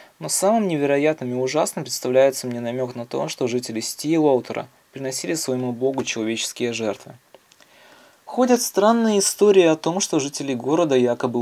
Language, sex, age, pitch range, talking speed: Russian, male, 20-39, 125-160 Hz, 140 wpm